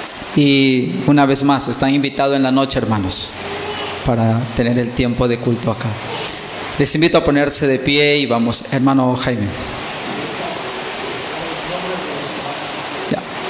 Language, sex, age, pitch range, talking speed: English, male, 30-49, 125-145 Hz, 125 wpm